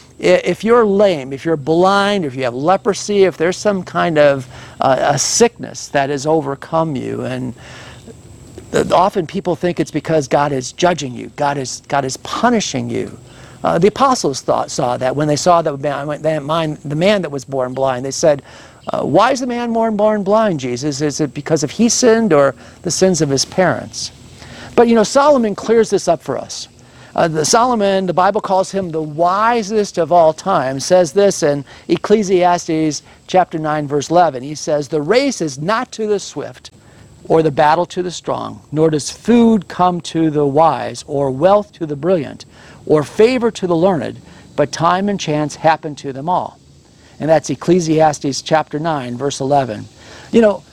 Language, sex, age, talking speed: English, male, 50-69, 185 wpm